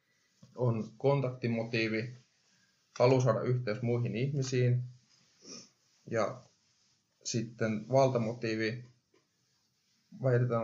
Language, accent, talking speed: Finnish, native, 60 wpm